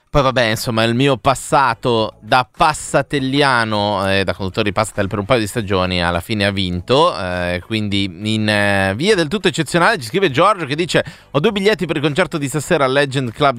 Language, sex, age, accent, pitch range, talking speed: Italian, male, 30-49, native, 100-145 Hz, 205 wpm